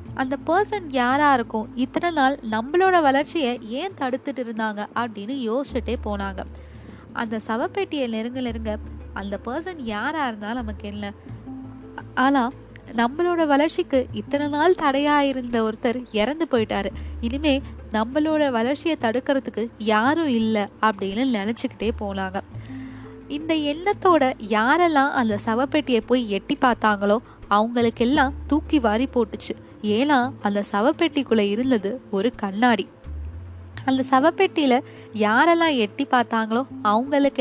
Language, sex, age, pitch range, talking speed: Tamil, female, 20-39, 210-280 Hz, 110 wpm